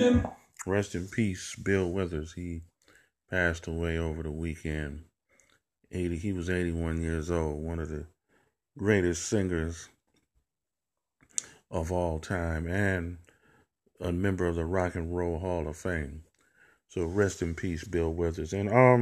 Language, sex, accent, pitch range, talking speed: English, male, American, 85-95 Hz, 140 wpm